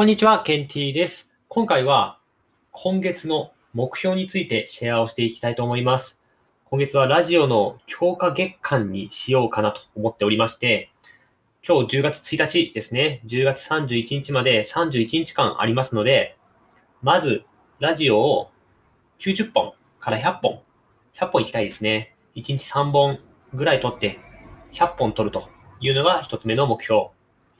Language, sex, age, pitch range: Japanese, male, 20-39, 110-145 Hz